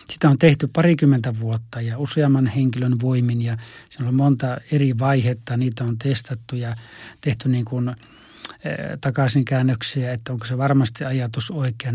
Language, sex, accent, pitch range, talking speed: Finnish, male, native, 120-145 Hz, 155 wpm